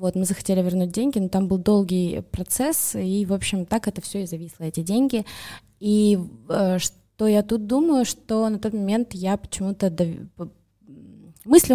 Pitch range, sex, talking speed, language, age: 175-210 Hz, female, 165 wpm, Russian, 20-39